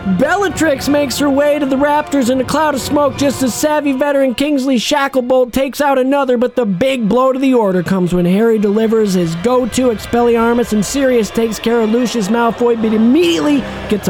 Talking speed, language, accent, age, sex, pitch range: 190 wpm, English, American, 40-59, male, 220-290 Hz